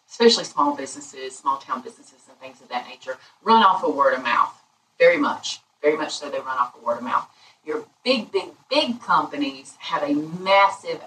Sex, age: female, 30-49